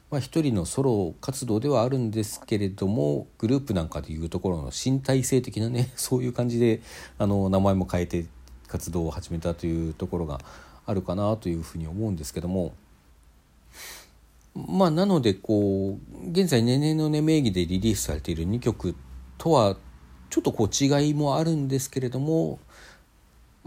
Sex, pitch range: male, 80-135 Hz